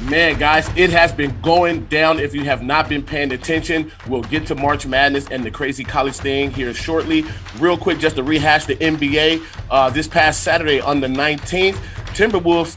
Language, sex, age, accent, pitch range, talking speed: English, male, 30-49, American, 125-155 Hz, 195 wpm